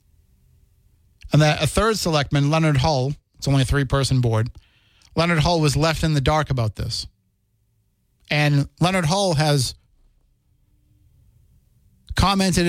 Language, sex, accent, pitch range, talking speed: English, male, American, 115-160 Hz, 125 wpm